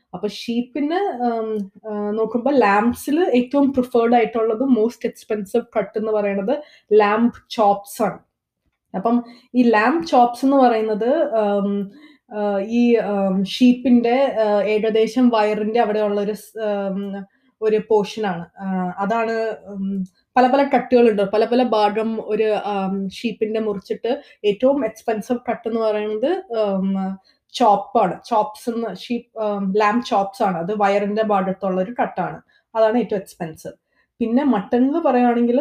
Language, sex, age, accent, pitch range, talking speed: Malayalam, female, 20-39, native, 205-240 Hz, 100 wpm